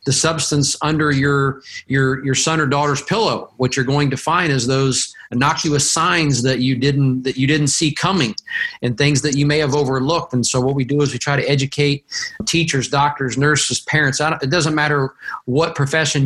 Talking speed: 205 wpm